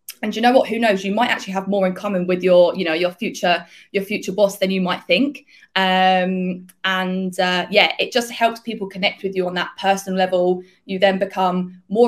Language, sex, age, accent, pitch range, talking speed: English, female, 20-39, British, 185-205 Hz, 225 wpm